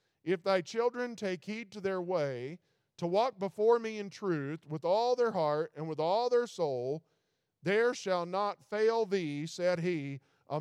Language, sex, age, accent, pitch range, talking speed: English, male, 50-69, American, 145-185 Hz, 175 wpm